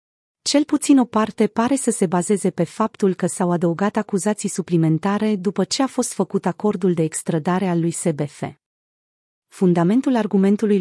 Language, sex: Romanian, female